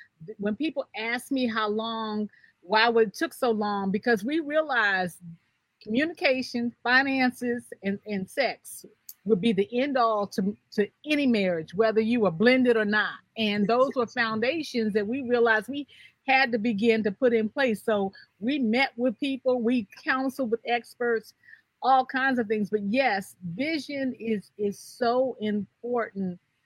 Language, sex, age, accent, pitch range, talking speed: English, female, 40-59, American, 210-255 Hz, 155 wpm